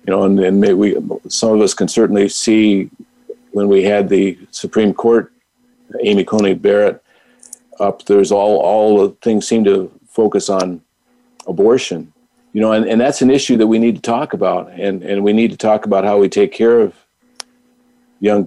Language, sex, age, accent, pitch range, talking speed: English, male, 50-69, American, 100-135 Hz, 190 wpm